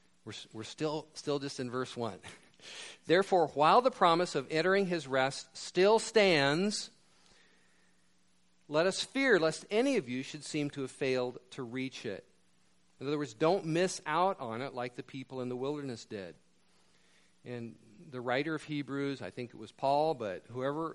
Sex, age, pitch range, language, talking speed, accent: male, 50-69, 110-150 Hz, English, 170 wpm, American